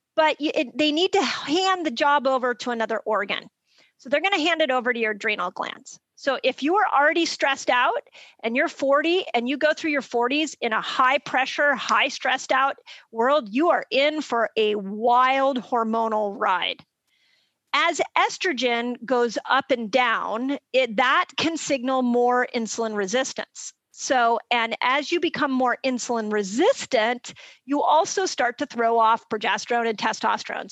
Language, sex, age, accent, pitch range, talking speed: English, female, 40-59, American, 230-295 Hz, 160 wpm